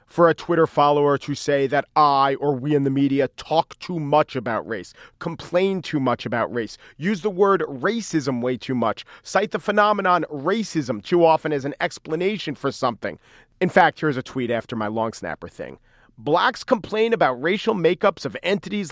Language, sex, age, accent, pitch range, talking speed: English, male, 40-59, American, 140-195 Hz, 185 wpm